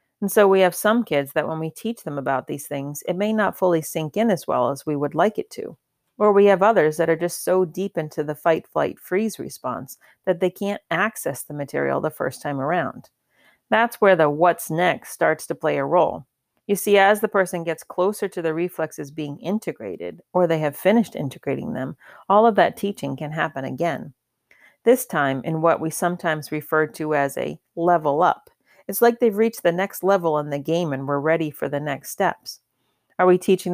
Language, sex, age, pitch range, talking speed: English, female, 40-59, 155-195 Hz, 210 wpm